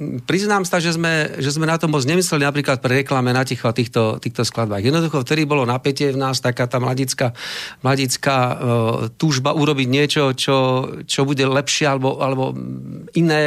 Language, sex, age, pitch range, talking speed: Slovak, male, 50-69, 130-160 Hz, 170 wpm